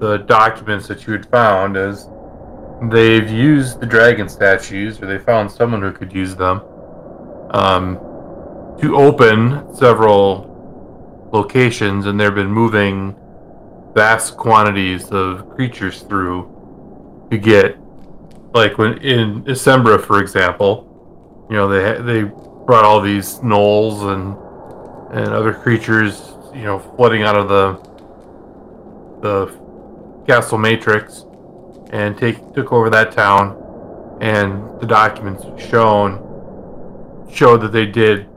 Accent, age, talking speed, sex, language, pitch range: American, 30-49, 120 wpm, male, English, 100-115 Hz